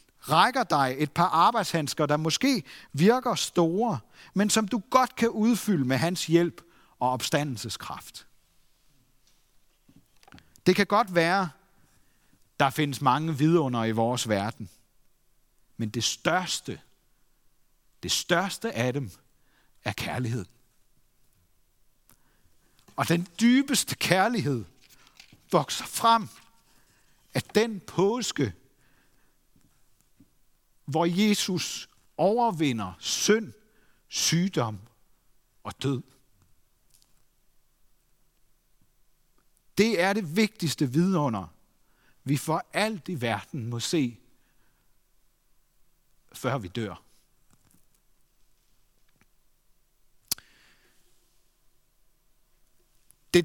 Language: Danish